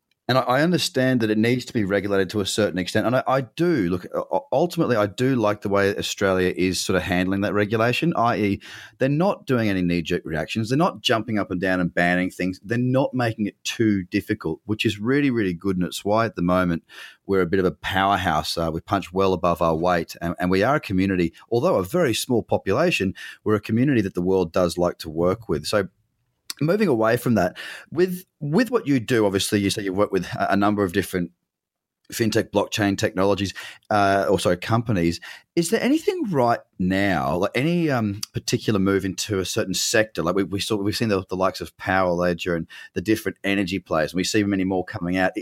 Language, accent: English, Australian